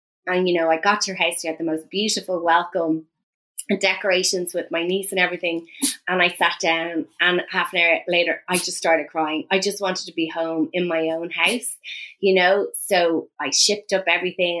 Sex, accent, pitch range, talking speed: female, Irish, 165-195 Hz, 210 wpm